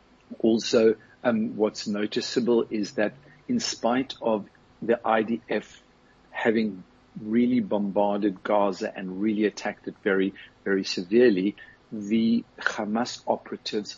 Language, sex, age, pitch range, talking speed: English, male, 50-69, 100-115 Hz, 105 wpm